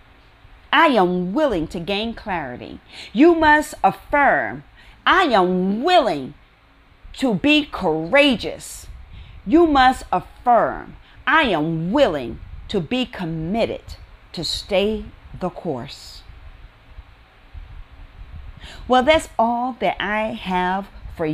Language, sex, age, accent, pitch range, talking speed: English, female, 40-59, American, 160-235 Hz, 100 wpm